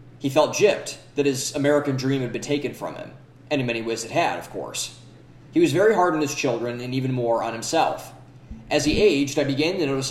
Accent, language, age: American, English, 20-39